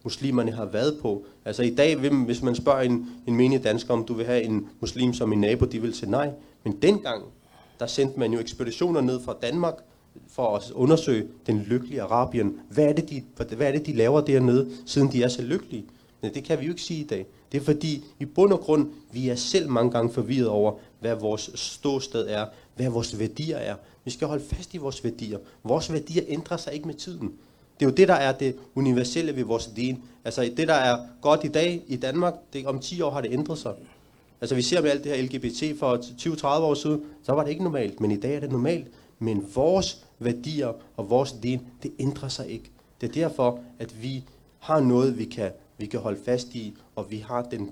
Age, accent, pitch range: 30-49, native, 115-145 Hz